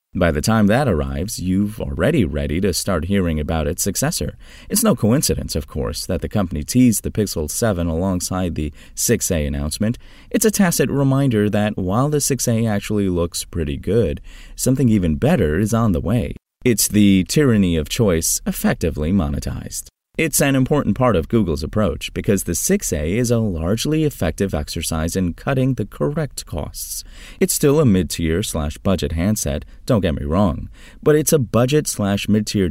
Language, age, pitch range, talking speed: English, 30-49, 80-115 Hz, 170 wpm